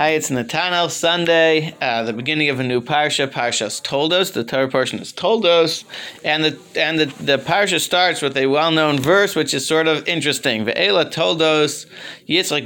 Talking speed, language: 175 wpm, English